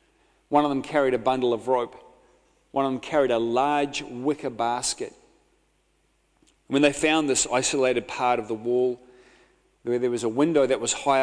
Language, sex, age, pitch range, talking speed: English, male, 40-59, 130-155 Hz, 175 wpm